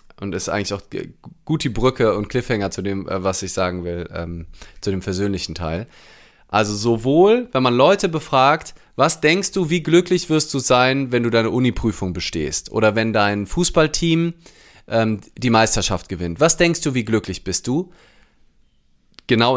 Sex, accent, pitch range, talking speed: male, German, 100-135 Hz, 170 wpm